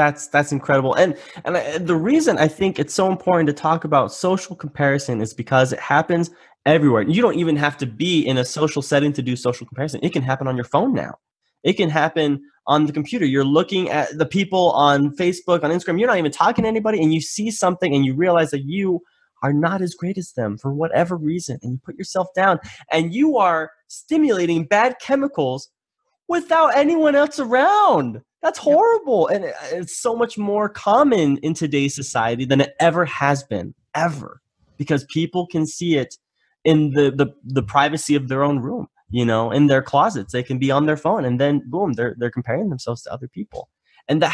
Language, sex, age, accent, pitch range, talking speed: English, male, 20-39, American, 140-180 Hz, 205 wpm